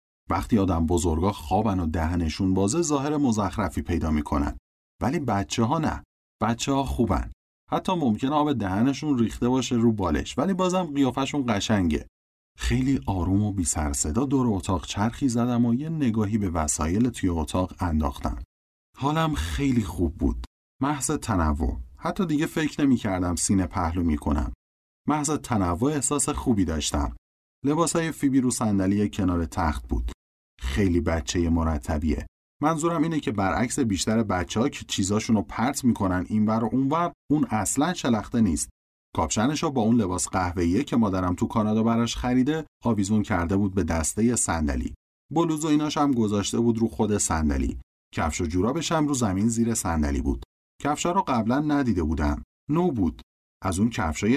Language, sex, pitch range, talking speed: Persian, male, 80-125 Hz, 150 wpm